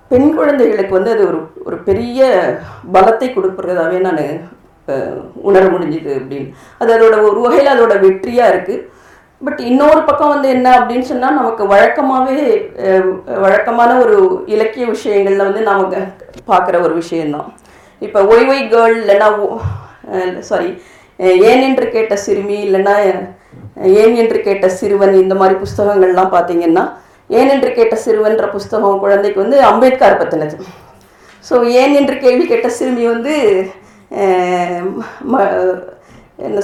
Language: Tamil